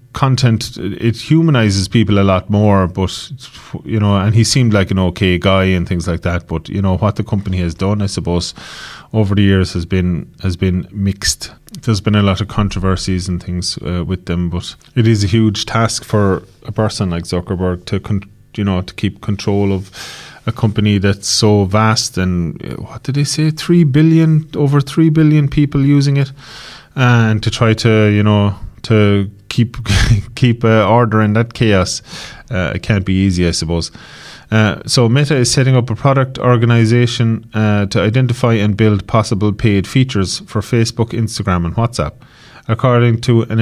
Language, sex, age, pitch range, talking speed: English, male, 30-49, 100-120 Hz, 180 wpm